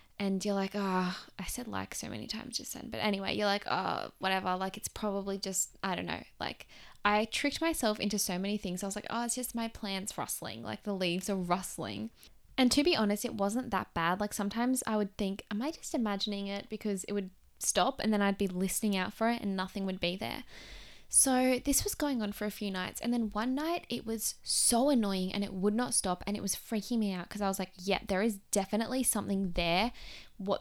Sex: female